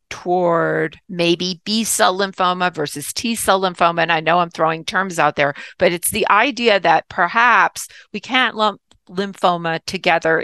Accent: American